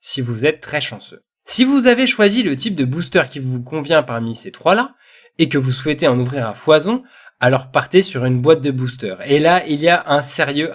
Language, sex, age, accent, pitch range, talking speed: French, male, 20-39, French, 130-185 Hz, 235 wpm